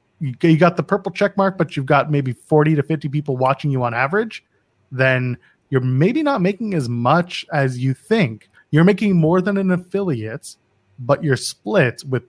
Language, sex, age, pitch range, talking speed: English, male, 30-49, 125-155 Hz, 185 wpm